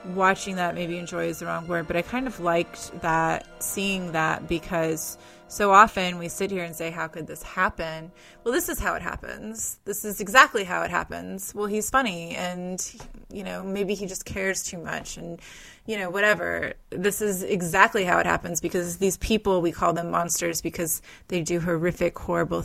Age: 20-39